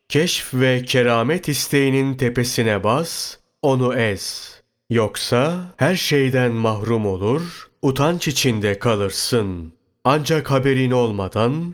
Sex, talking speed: male, 95 wpm